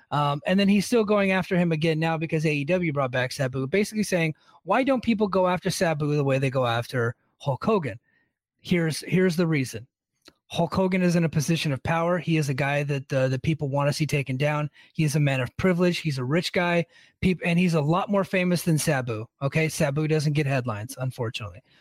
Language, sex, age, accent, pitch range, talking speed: English, male, 30-49, American, 155-200 Hz, 220 wpm